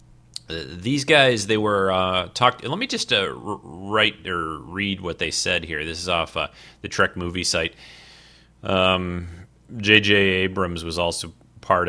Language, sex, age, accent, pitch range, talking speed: English, male, 30-49, American, 90-105 Hz, 160 wpm